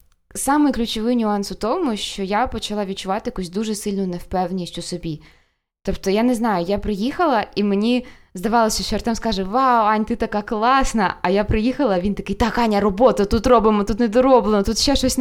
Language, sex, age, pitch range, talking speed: Ukrainian, female, 20-39, 175-230 Hz, 190 wpm